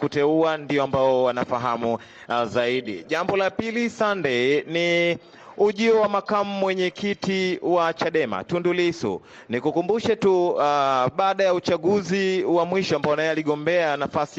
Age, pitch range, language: 30-49, 135-170 Hz, Swahili